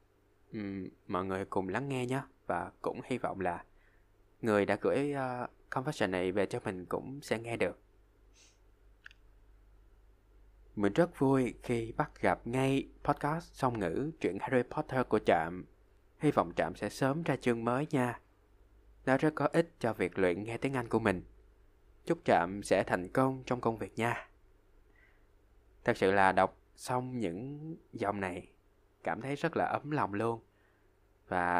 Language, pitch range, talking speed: Vietnamese, 95-125 Hz, 160 wpm